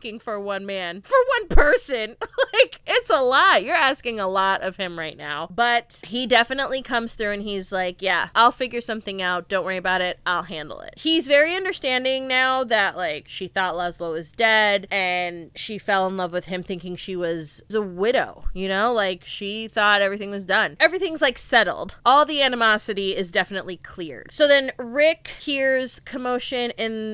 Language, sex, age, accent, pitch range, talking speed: English, female, 20-39, American, 185-250 Hz, 185 wpm